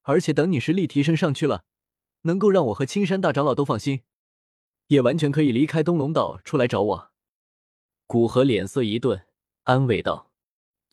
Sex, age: male, 20-39